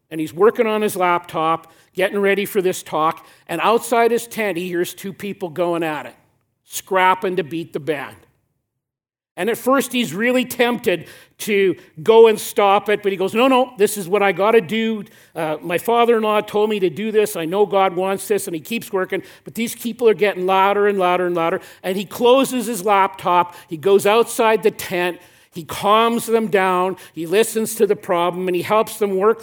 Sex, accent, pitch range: male, American, 155-210 Hz